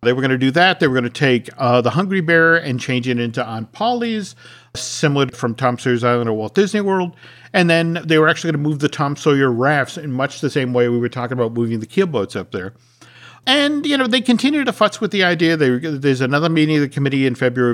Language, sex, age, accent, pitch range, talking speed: English, male, 50-69, American, 120-150 Hz, 255 wpm